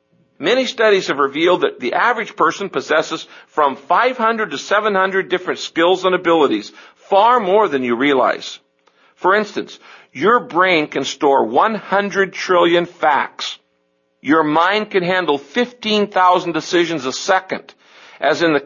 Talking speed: 135 wpm